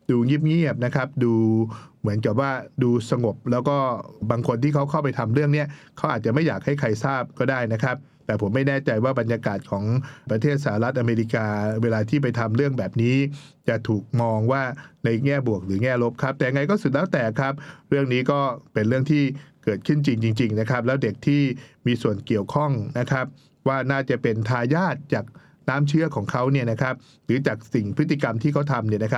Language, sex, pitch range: English, male, 115-145 Hz